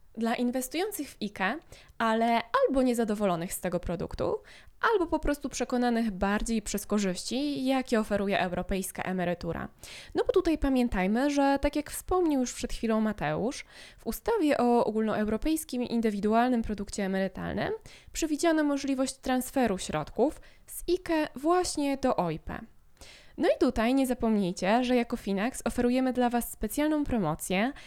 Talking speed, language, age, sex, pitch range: 135 wpm, Polish, 20-39, female, 205-275 Hz